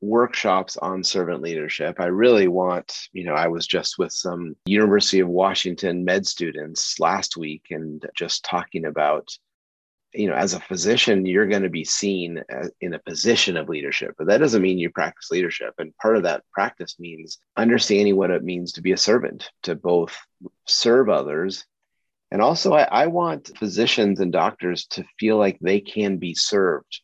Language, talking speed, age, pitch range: English, 180 wpm, 30-49, 85-100 Hz